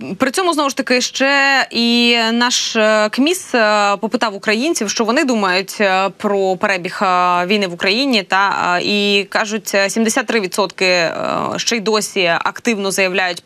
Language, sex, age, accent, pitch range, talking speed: Ukrainian, female, 20-39, native, 195-235 Hz, 125 wpm